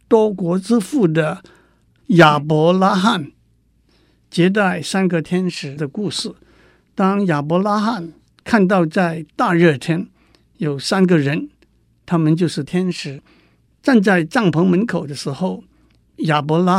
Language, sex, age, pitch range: Chinese, male, 60-79, 155-195 Hz